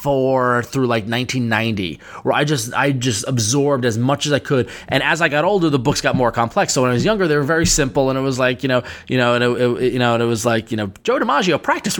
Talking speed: 280 wpm